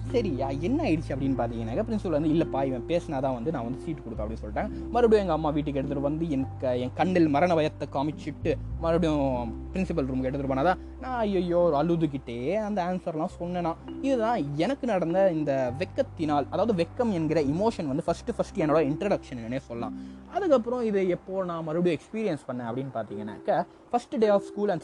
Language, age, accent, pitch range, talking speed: Tamil, 20-39, native, 135-200 Hz, 170 wpm